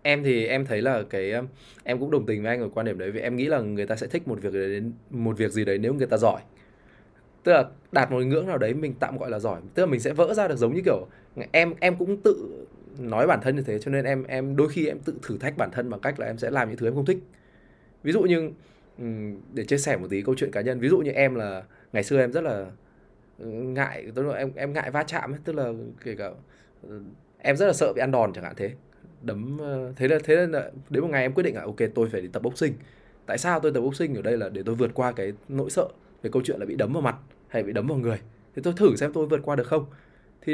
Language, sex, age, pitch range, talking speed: Vietnamese, male, 20-39, 110-145 Hz, 280 wpm